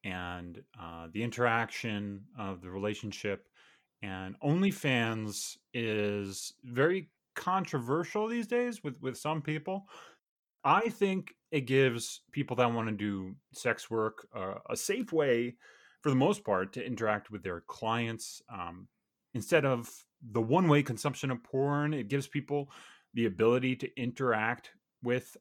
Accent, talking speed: American, 135 wpm